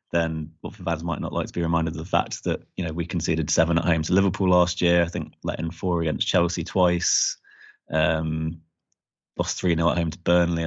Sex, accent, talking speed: male, British, 225 wpm